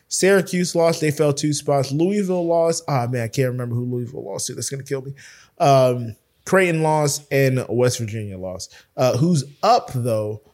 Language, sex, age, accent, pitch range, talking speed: English, male, 20-39, American, 120-155 Hz, 195 wpm